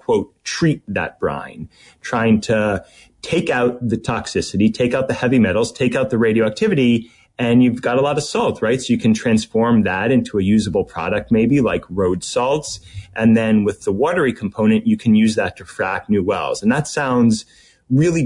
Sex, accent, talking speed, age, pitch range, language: male, American, 190 wpm, 30-49, 100-125 Hz, English